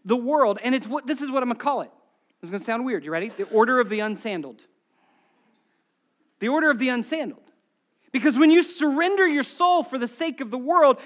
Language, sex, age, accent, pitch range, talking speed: English, male, 40-59, American, 235-310 Hz, 235 wpm